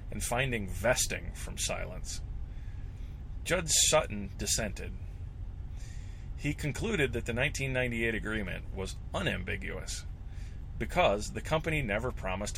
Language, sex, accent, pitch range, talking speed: English, male, American, 95-120 Hz, 100 wpm